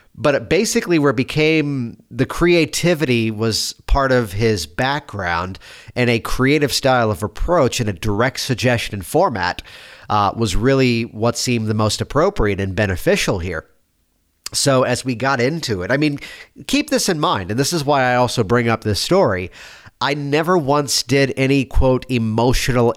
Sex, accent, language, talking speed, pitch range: male, American, English, 165 wpm, 110-145 Hz